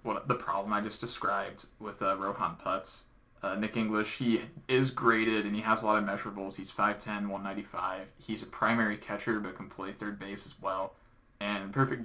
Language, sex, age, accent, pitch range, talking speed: English, male, 20-39, American, 100-115 Hz, 185 wpm